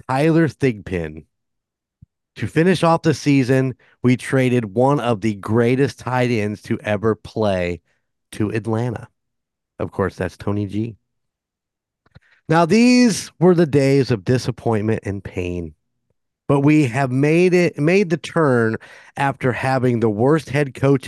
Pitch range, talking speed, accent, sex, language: 110-150 Hz, 135 wpm, American, male, English